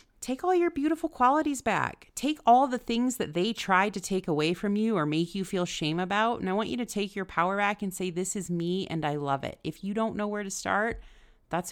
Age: 30-49